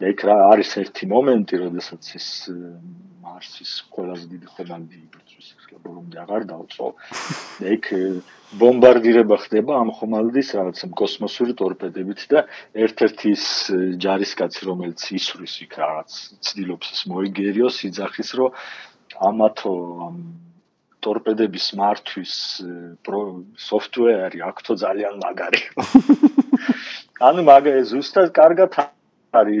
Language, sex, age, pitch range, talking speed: English, male, 50-69, 90-130 Hz, 65 wpm